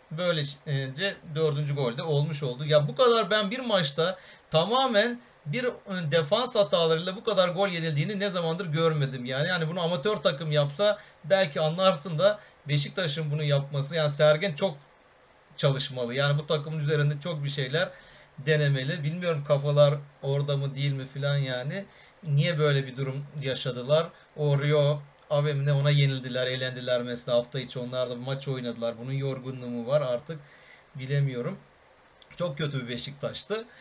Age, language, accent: 40-59, Turkish, native